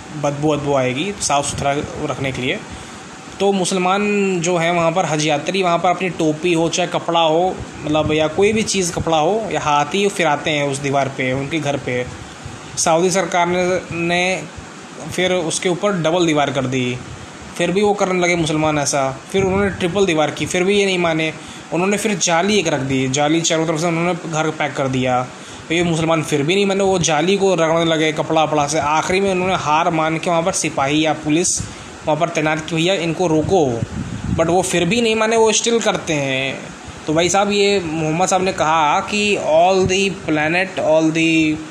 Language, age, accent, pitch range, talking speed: Hindi, 20-39, native, 150-185 Hz, 205 wpm